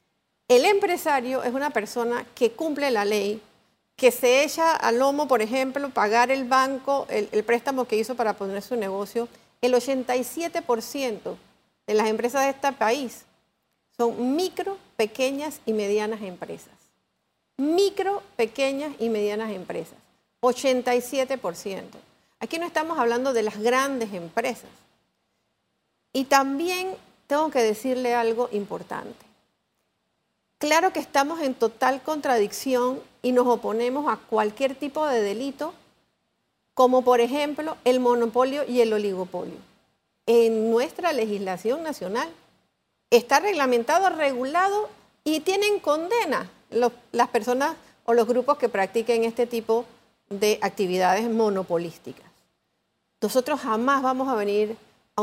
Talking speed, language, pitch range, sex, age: 125 wpm, Spanish, 220-280 Hz, female, 50-69